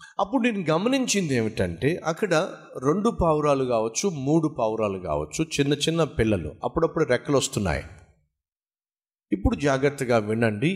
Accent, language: native, Telugu